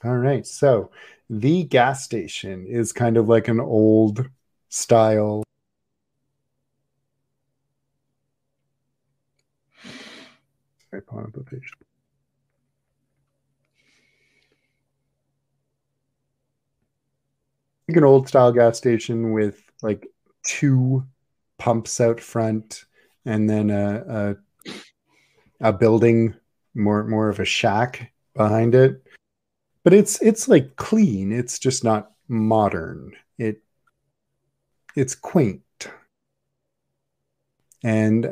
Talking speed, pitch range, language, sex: 85 wpm, 110-135 Hz, English, male